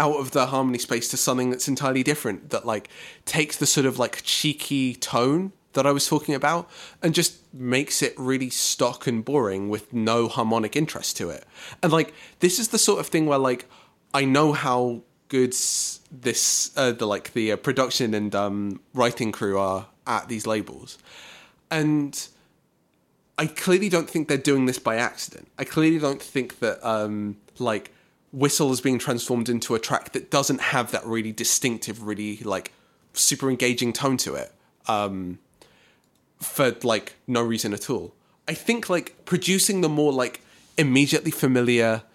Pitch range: 115-150 Hz